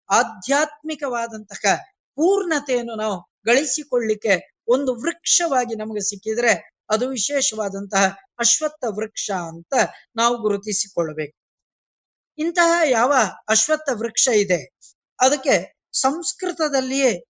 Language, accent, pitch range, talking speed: Kannada, native, 210-285 Hz, 75 wpm